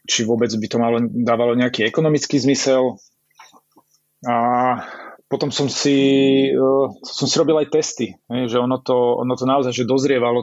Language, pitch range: Slovak, 120-135 Hz